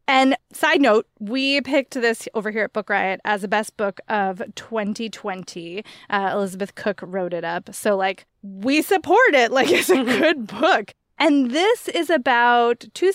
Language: English